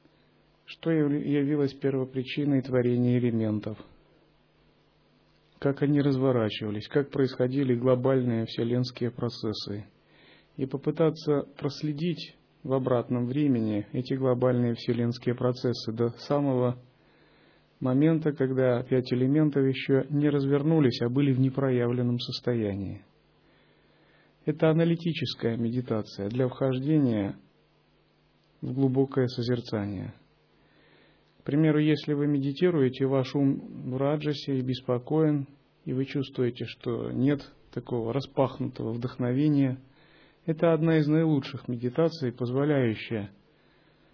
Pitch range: 120-145 Hz